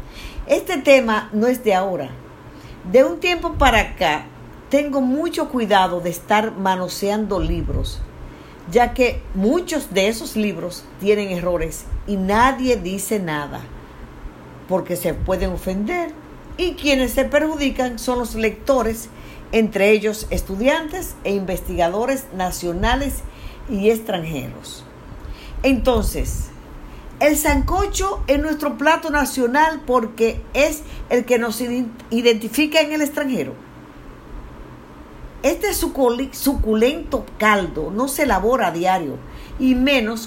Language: Spanish